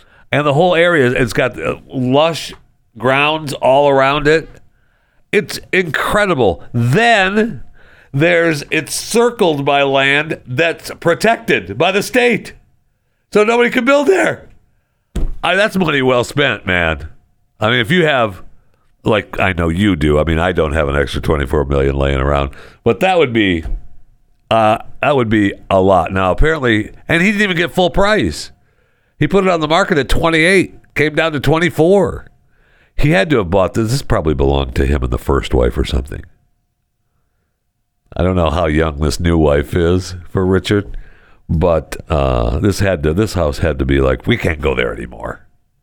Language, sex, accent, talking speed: English, male, American, 170 wpm